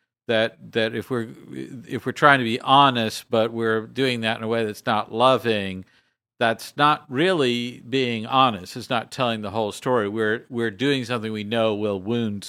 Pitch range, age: 115-145 Hz, 50-69